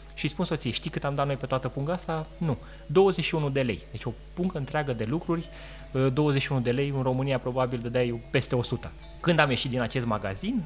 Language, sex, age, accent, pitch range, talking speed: Romanian, male, 20-39, native, 120-165 Hz, 210 wpm